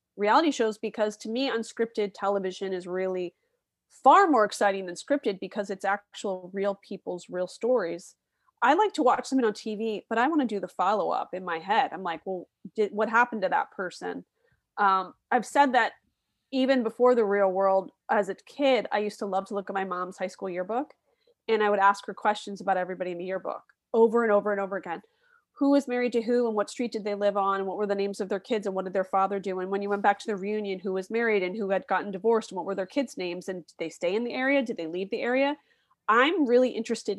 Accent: American